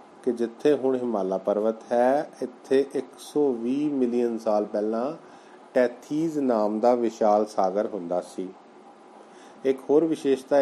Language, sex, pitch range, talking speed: Punjabi, male, 110-135 Hz, 120 wpm